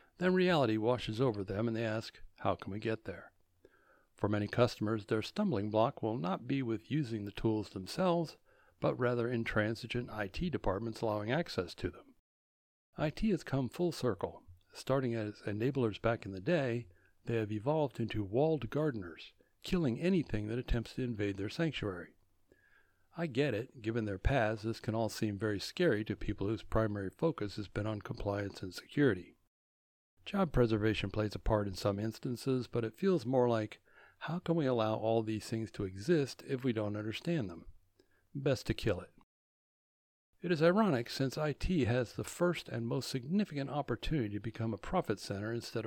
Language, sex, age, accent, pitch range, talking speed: English, male, 60-79, American, 105-135 Hz, 175 wpm